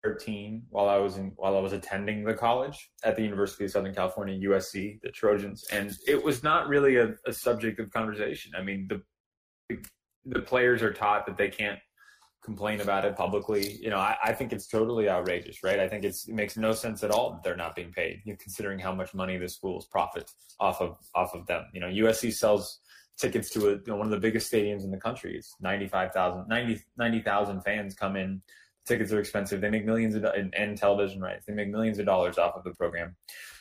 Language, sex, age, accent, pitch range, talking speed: Portuguese, male, 20-39, American, 95-110 Hz, 230 wpm